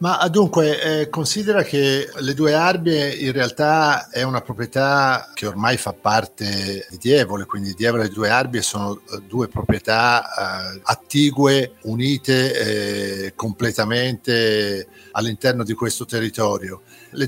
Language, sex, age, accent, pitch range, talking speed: Italian, male, 50-69, native, 110-150 Hz, 130 wpm